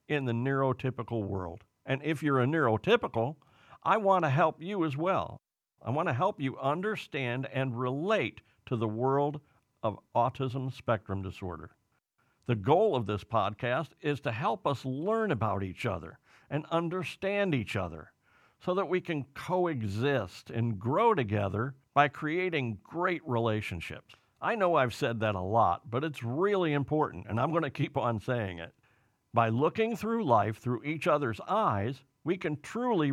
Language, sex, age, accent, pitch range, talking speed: English, male, 50-69, American, 115-155 Hz, 165 wpm